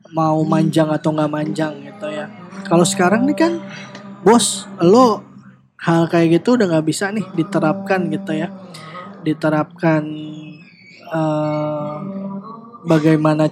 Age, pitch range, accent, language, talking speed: 20-39, 155-180 Hz, native, Indonesian, 115 wpm